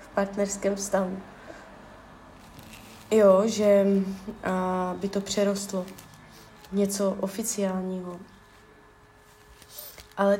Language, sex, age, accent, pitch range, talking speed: Czech, female, 20-39, native, 195-220 Hz, 65 wpm